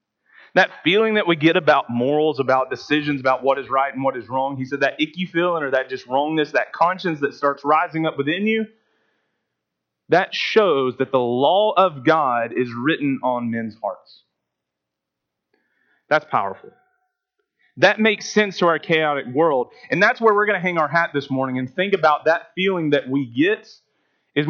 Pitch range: 130-170 Hz